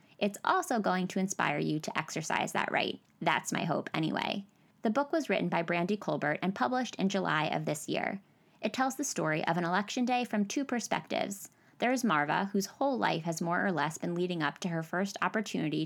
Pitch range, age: 165-220 Hz, 20-39